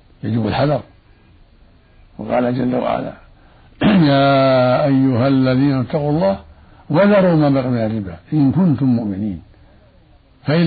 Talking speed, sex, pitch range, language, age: 100 wpm, male, 85-135 Hz, Arabic, 60-79